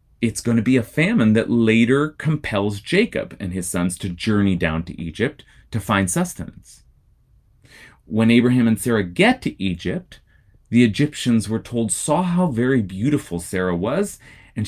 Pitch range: 95-130 Hz